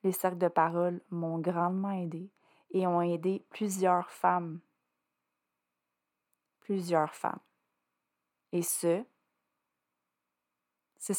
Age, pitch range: 20-39, 160-195 Hz